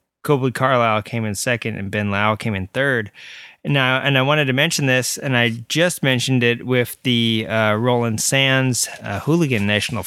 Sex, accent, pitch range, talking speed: male, American, 120-160 Hz, 190 wpm